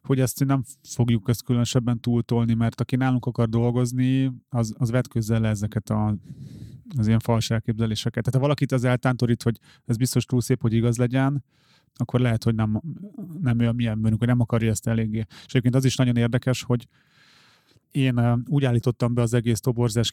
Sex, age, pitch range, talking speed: male, 30-49, 115-130 Hz, 185 wpm